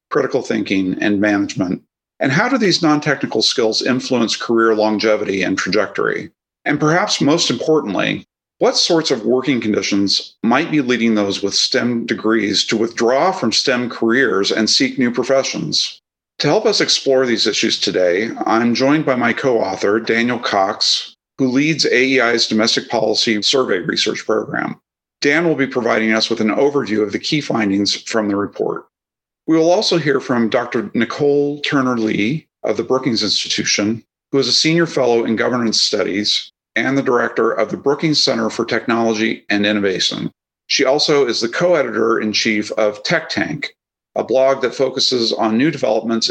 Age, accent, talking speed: 50-69, American, 160 wpm